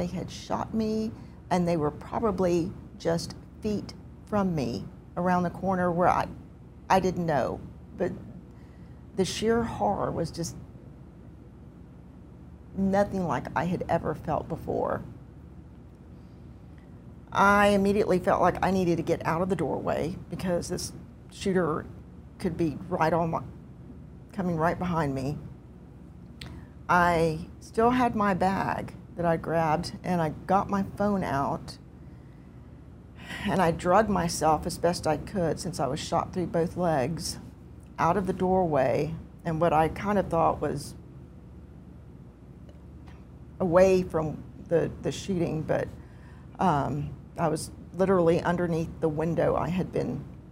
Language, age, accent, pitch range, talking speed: English, 50-69, American, 135-185 Hz, 135 wpm